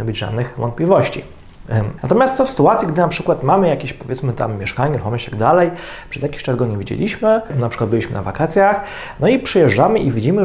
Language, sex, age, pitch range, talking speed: Polish, male, 40-59, 115-150 Hz, 200 wpm